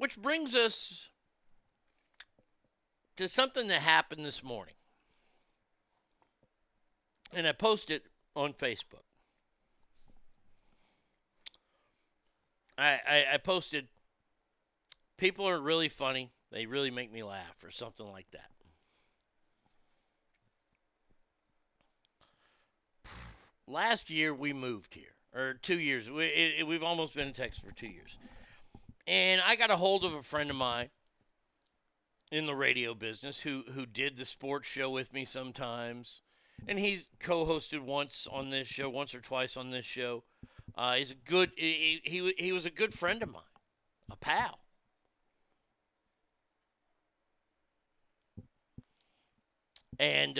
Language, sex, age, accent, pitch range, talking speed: English, male, 50-69, American, 120-165 Hz, 125 wpm